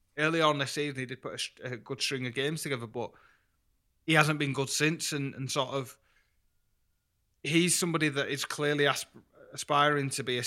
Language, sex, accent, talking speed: English, male, British, 185 wpm